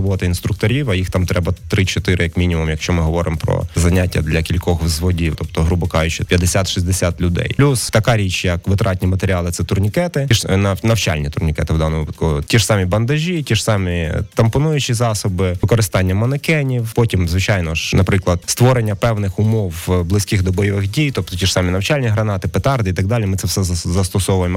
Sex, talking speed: male, 175 wpm